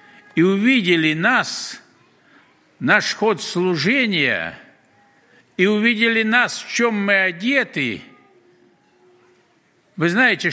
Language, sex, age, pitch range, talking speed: Russian, male, 60-79, 160-250 Hz, 85 wpm